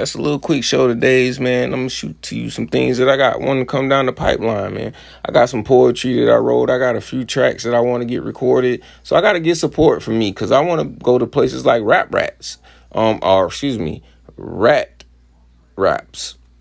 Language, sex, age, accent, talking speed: English, male, 30-49, American, 240 wpm